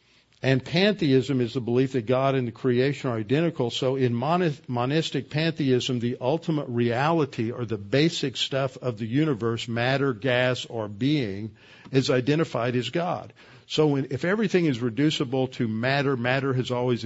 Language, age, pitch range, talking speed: English, 50-69, 120-135 Hz, 160 wpm